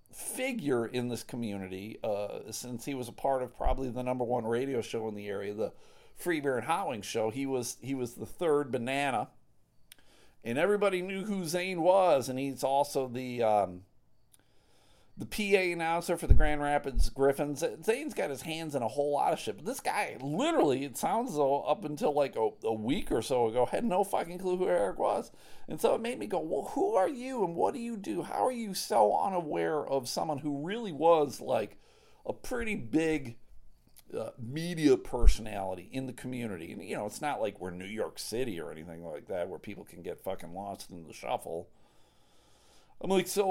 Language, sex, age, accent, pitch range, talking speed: English, male, 40-59, American, 125-175 Hz, 200 wpm